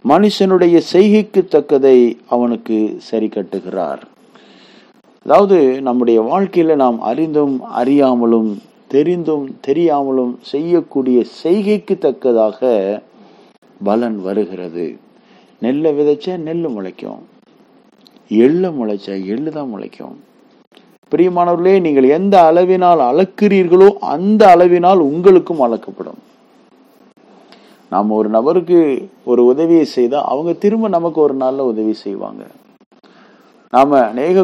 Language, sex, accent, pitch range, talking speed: Tamil, male, native, 120-170 Hz, 90 wpm